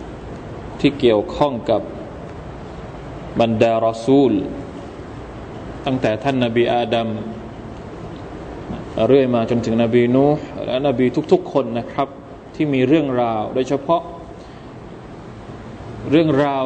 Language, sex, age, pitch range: Thai, male, 20-39, 120-145 Hz